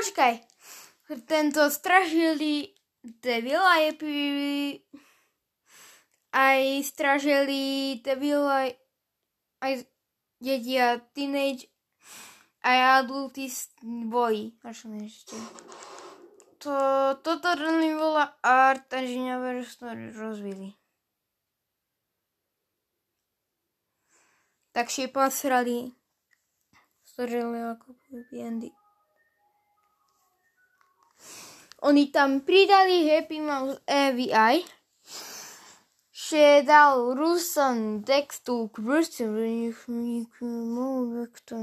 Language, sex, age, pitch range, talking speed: Slovak, female, 10-29, 240-300 Hz, 75 wpm